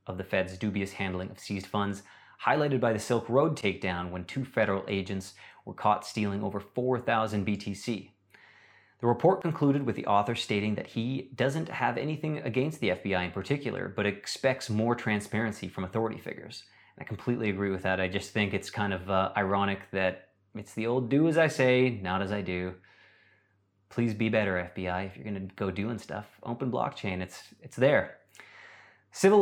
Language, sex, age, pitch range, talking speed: English, male, 30-49, 95-120 Hz, 185 wpm